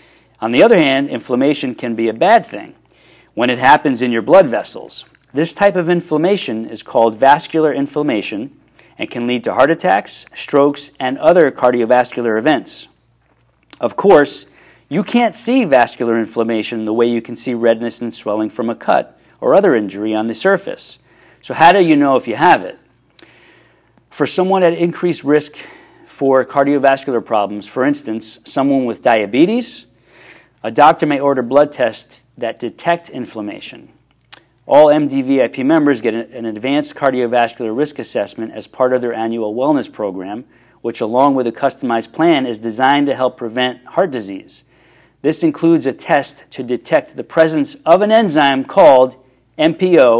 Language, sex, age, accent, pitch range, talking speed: English, male, 40-59, American, 115-150 Hz, 160 wpm